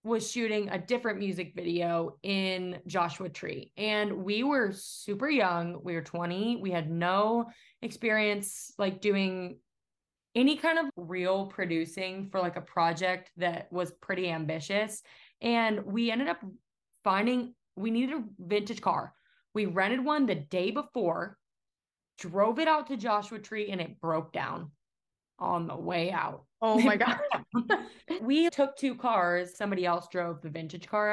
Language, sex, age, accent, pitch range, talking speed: English, female, 20-39, American, 175-230 Hz, 150 wpm